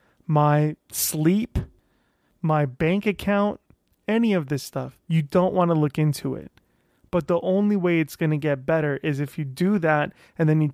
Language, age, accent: English, 20-39, American